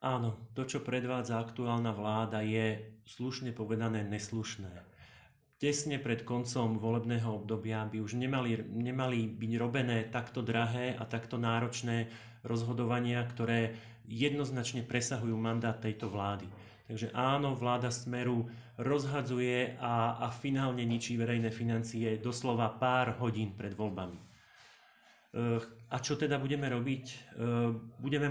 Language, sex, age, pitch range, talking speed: Slovak, male, 30-49, 115-125 Hz, 115 wpm